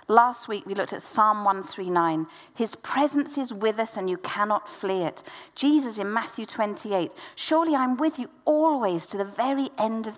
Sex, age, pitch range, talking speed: female, 50-69, 190-280 Hz, 185 wpm